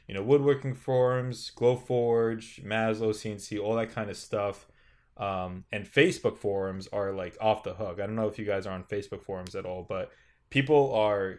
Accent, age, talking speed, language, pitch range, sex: American, 20-39, 190 wpm, English, 100-125 Hz, male